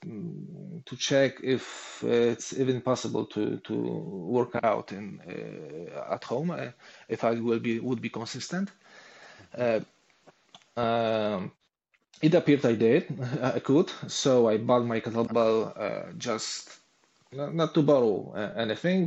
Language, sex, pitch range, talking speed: English, male, 115-140 Hz, 135 wpm